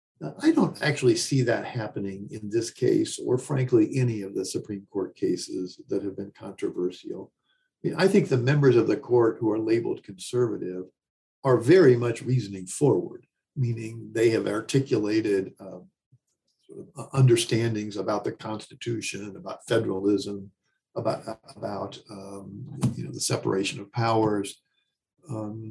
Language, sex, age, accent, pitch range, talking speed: English, male, 50-69, American, 110-140 Hz, 135 wpm